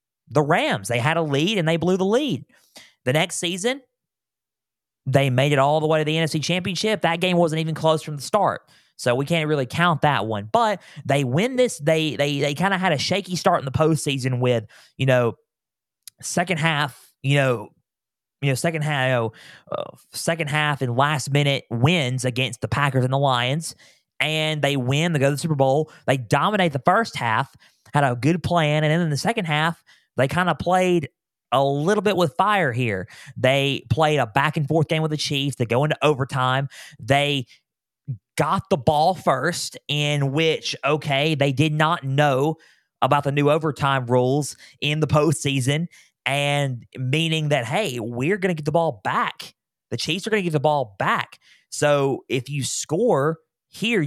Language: English